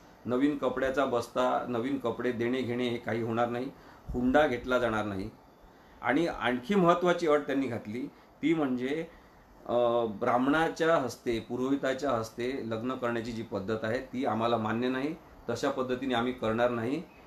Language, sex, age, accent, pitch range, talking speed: Marathi, male, 40-59, native, 110-135 Hz, 125 wpm